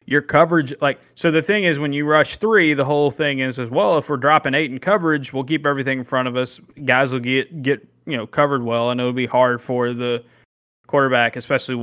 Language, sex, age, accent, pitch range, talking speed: English, male, 20-39, American, 125-150 Hz, 235 wpm